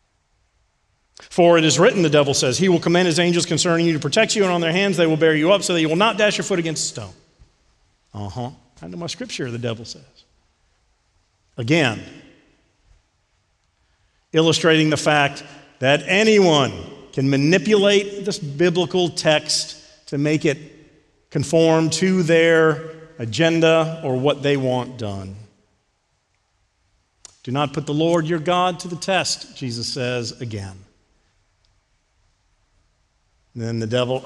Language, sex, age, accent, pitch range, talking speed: English, male, 50-69, American, 115-190 Hz, 150 wpm